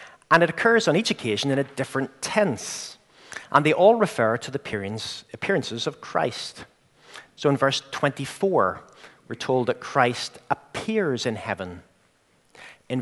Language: English